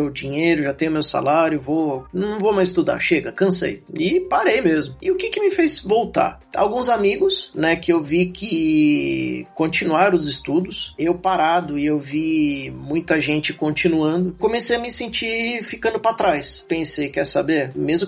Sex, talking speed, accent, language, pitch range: male, 170 wpm, Brazilian, Portuguese, 165-200 Hz